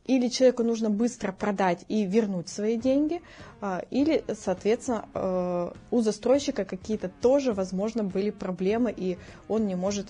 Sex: female